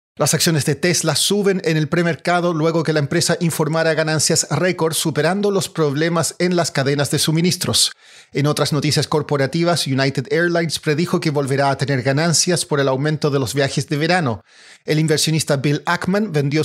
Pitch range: 145-180 Hz